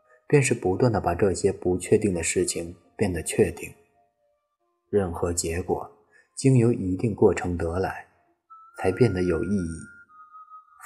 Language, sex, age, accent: Chinese, male, 20-39, native